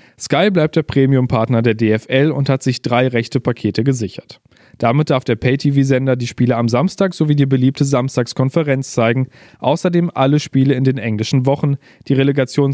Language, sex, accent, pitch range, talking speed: German, male, German, 125-150 Hz, 165 wpm